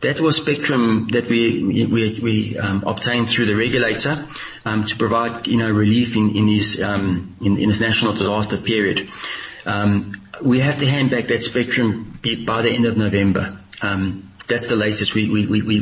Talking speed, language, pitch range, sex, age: 180 wpm, English, 105-125 Hz, male, 30-49